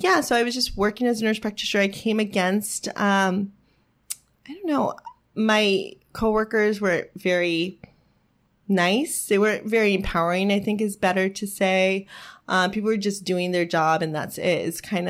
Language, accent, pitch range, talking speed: English, American, 175-215 Hz, 165 wpm